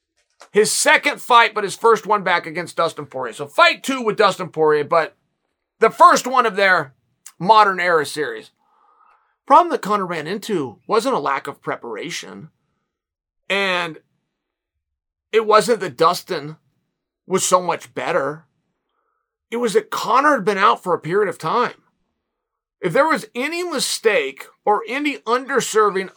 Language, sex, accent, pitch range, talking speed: English, male, American, 180-250 Hz, 150 wpm